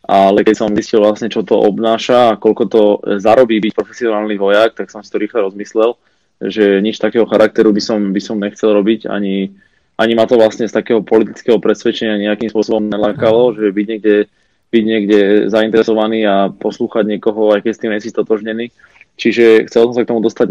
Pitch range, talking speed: 105-115 Hz, 185 wpm